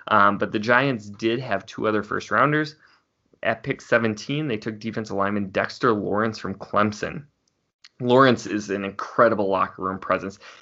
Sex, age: male, 20-39